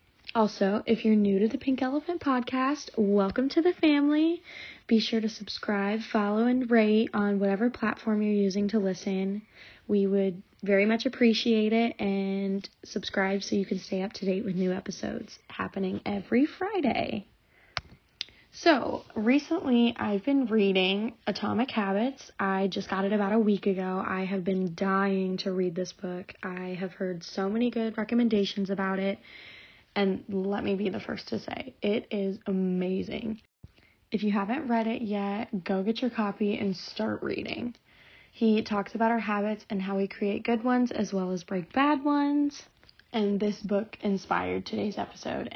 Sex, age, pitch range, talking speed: female, 20-39, 195-235 Hz, 165 wpm